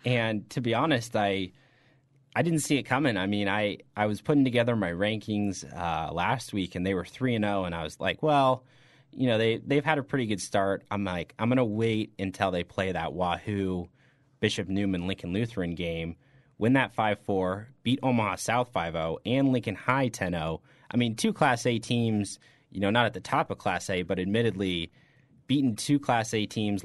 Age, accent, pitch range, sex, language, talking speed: 30-49, American, 95-120 Hz, male, English, 210 wpm